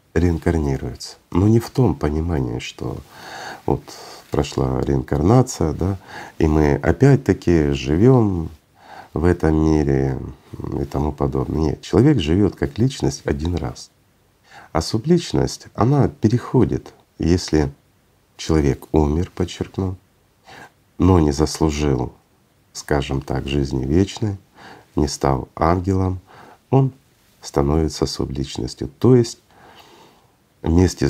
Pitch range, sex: 70-95 Hz, male